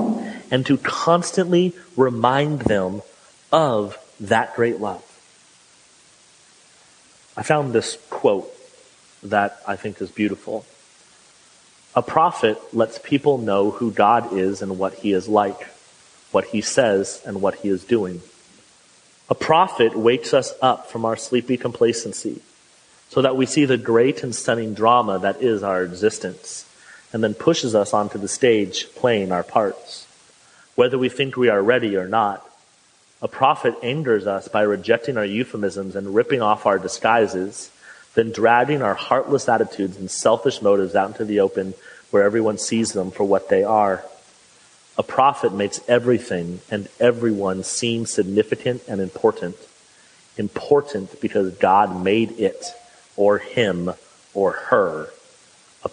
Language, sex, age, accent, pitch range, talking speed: English, male, 30-49, American, 100-125 Hz, 140 wpm